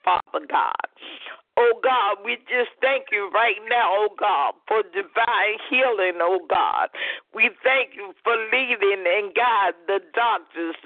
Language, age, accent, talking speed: English, 50-69, American, 145 wpm